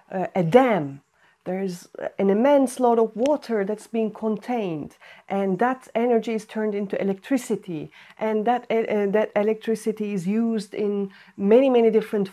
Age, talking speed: 40-59, 145 wpm